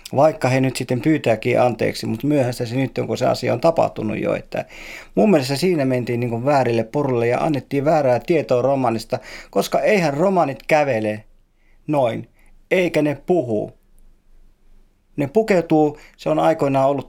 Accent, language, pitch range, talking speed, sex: native, Finnish, 125-165 Hz, 150 wpm, male